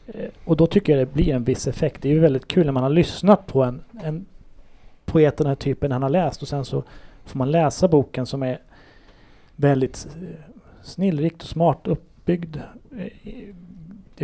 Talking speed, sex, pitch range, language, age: 180 wpm, male, 130-165 Hz, Swedish, 30-49